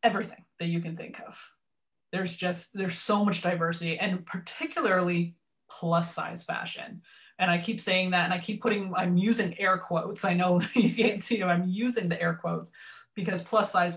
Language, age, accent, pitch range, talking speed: English, 20-39, American, 175-215 Hz, 190 wpm